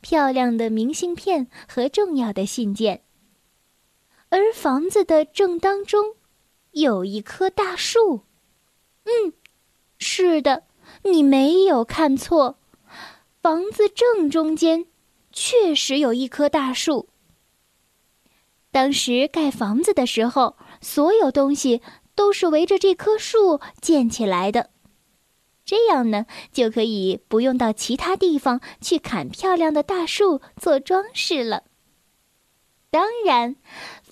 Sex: female